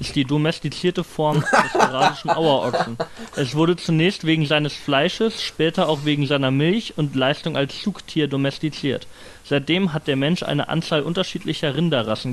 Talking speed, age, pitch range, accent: 150 wpm, 30-49, 130-165 Hz, German